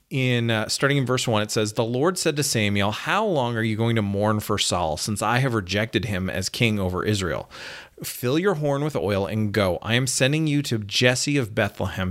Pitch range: 105-135 Hz